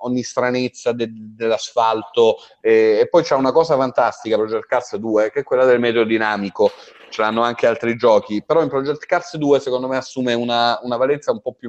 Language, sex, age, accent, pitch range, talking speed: Italian, male, 30-49, native, 95-130 Hz, 195 wpm